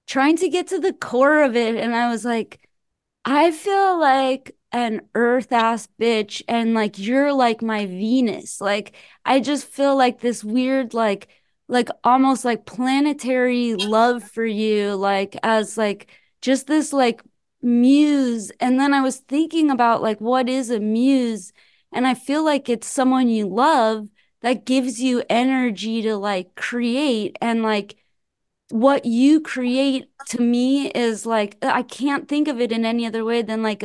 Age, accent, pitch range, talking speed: 20-39, American, 220-265 Hz, 165 wpm